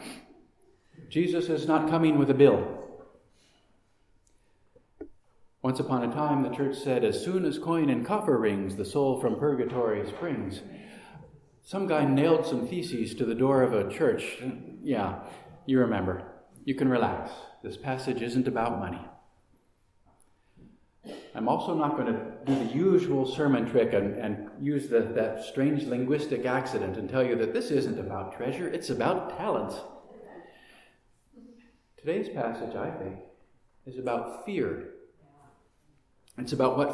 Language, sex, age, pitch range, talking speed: English, male, 40-59, 115-160 Hz, 140 wpm